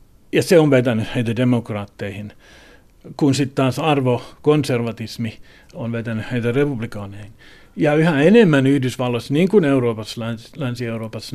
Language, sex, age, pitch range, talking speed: Finnish, male, 60-79, 115-145 Hz, 115 wpm